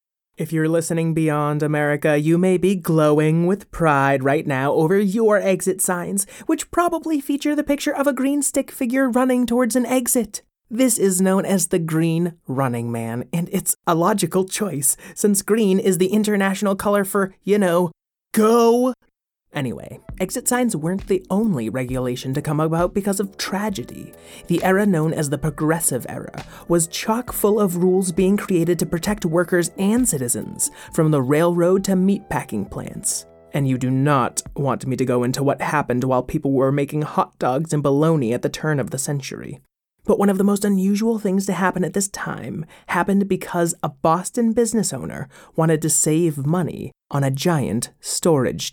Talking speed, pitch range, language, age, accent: 175 wpm, 150-205 Hz, English, 30-49, American